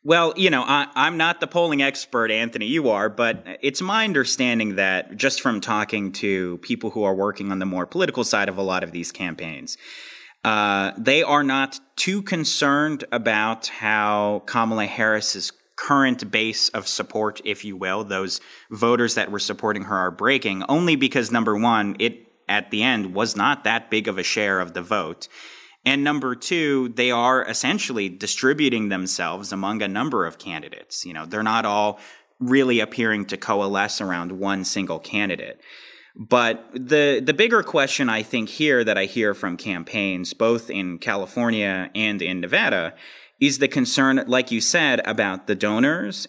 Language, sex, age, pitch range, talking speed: English, male, 30-49, 100-135 Hz, 170 wpm